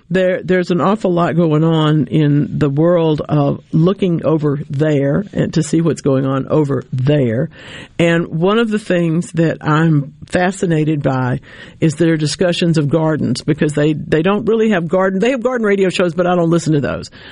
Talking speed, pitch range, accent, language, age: 185 wpm, 150-180 Hz, American, English, 60-79